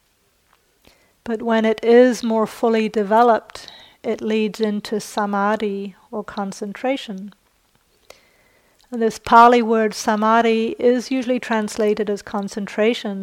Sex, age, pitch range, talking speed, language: female, 40-59, 210-230 Hz, 100 wpm, English